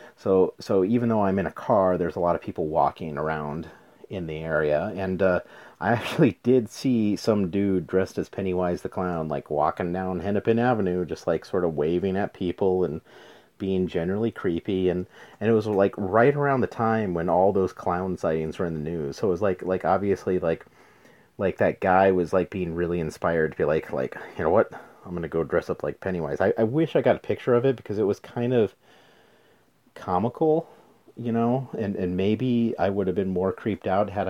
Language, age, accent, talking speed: English, 30-49, American, 215 wpm